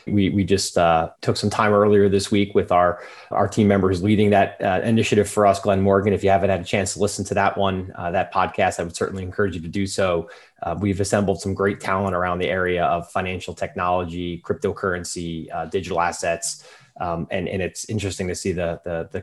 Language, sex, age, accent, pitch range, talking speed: English, male, 30-49, American, 95-105 Hz, 220 wpm